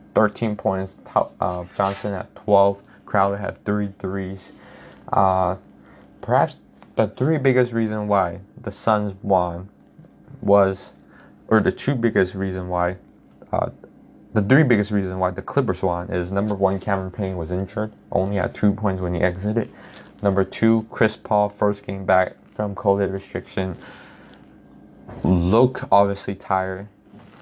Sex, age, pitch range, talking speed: male, 20-39, 95-115 Hz, 140 wpm